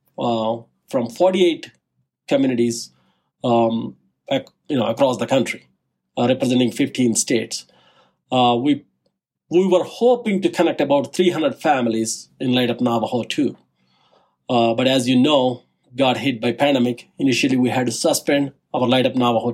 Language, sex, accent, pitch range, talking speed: English, male, Indian, 120-155 Hz, 155 wpm